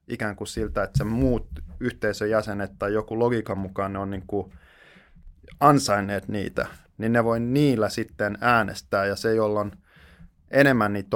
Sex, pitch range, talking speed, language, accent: male, 95-115 Hz, 155 wpm, Finnish, native